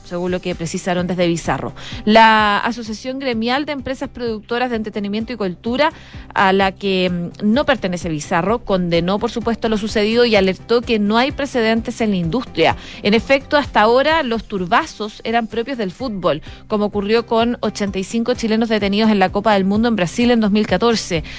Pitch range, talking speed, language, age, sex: 190-235 Hz, 170 wpm, Spanish, 30-49, female